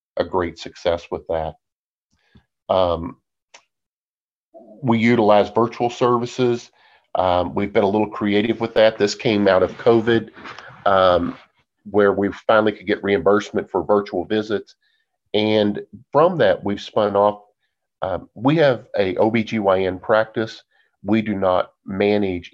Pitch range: 100-125 Hz